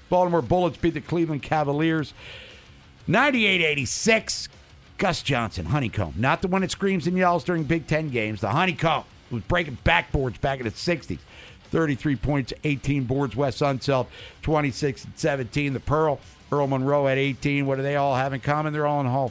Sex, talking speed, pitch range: male, 170 wpm, 135-170 Hz